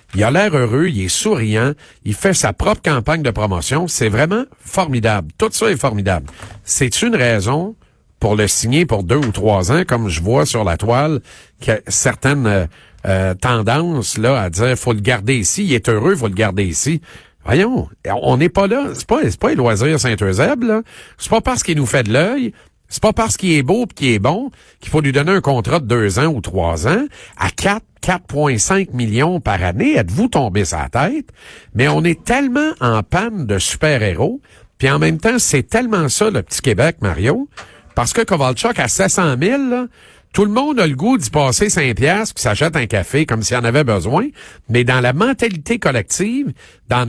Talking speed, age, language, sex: 210 wpm, 50-69, French, male